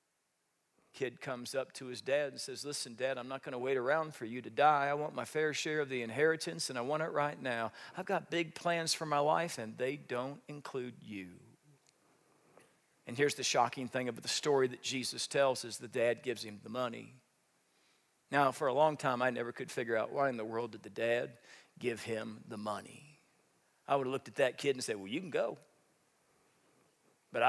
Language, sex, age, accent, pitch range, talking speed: English, male, 40-59, American, 120-150 Hz, 215 wpm